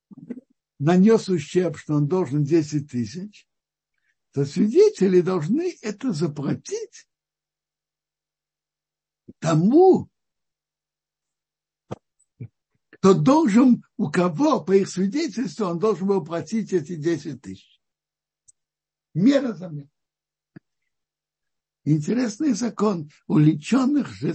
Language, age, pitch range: Russian, 60-79, 150-225 Hz